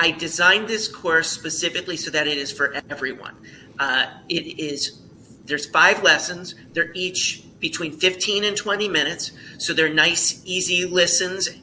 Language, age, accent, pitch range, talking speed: English, 40-59, American, 140-165 Hz, 150 wpm